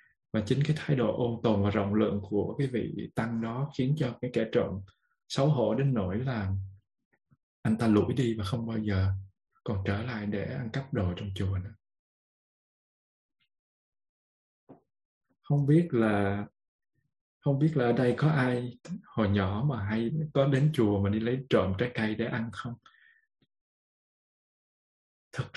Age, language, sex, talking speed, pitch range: 20-39, Vietnamese, male, 165 wpm, 110-140 Hz